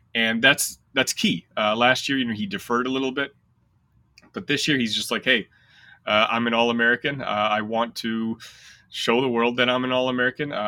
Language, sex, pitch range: English, male, 105-130 Hz